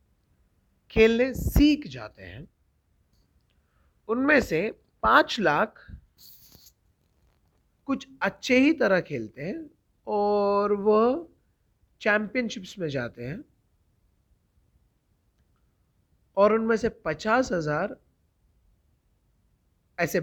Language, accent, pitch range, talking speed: Hindi, native, 130-210 Hz, 75 wpm